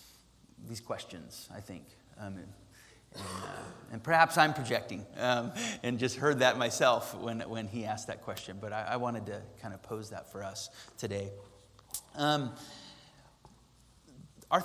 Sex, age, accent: male, 30-49, American